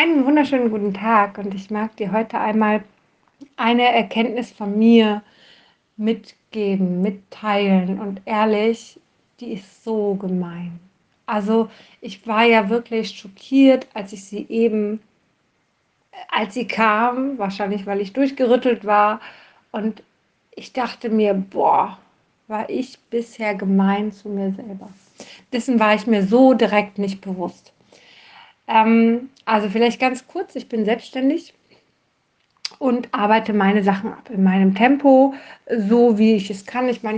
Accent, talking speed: German, 135 wpm